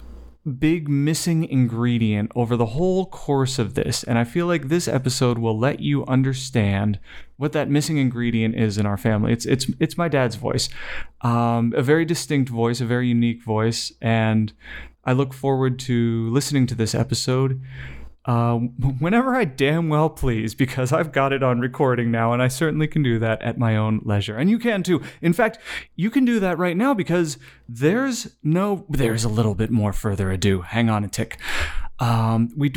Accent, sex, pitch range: American, male, 115-145 Hz